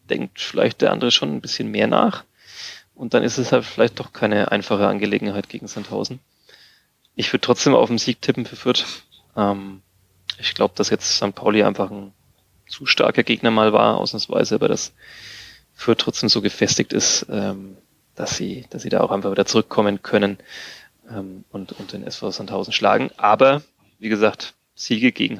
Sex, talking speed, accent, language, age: male, 175 wpm, German, German, 30-49